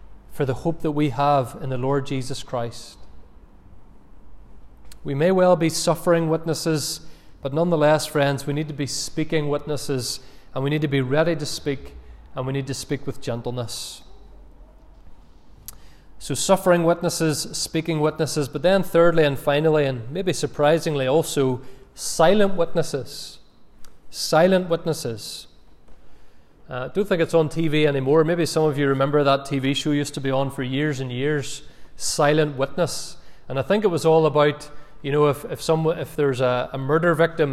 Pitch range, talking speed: 135-165 Hz, 165 wpm